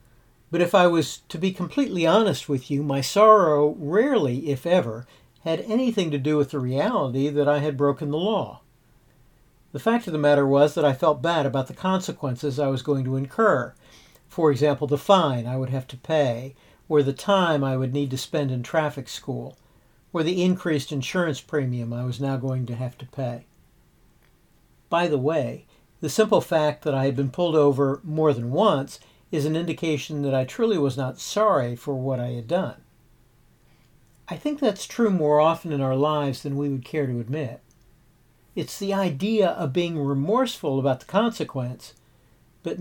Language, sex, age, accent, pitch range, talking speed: English, male, 60-79, American, 135-175 Hz, 185 wpm